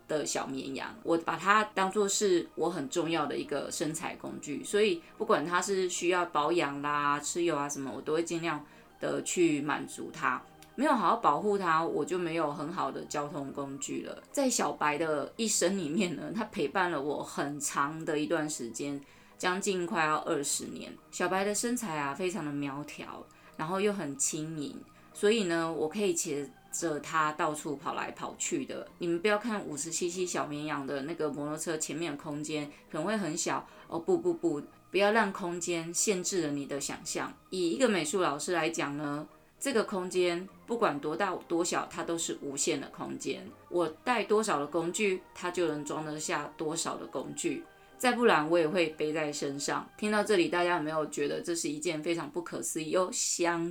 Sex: female